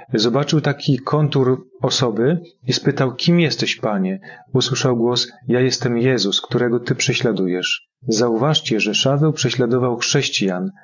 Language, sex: Polish, male